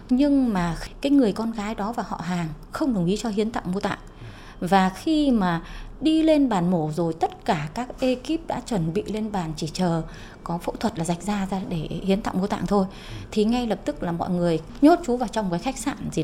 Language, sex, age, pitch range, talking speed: Vietnamese, female, 20-39, 190-265 Hz, 240 wpm